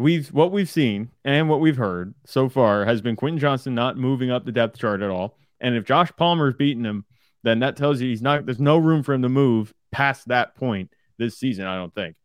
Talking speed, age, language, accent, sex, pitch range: 240 wpm, 20-39, English, American, male, 115-145 Hz